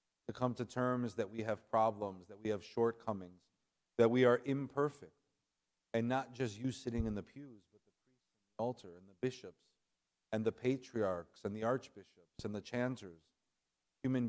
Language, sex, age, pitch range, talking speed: English, male, 50-69, 85-120 Hz, 180 wpm